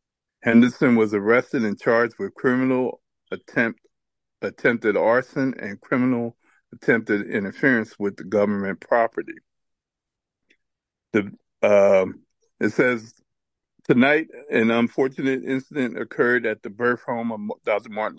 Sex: male